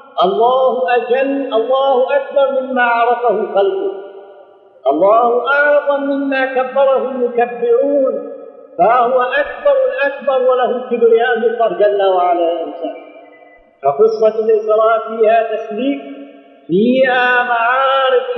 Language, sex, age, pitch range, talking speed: Arabic, male, 50-69, 225-275 Hz, 85 wpm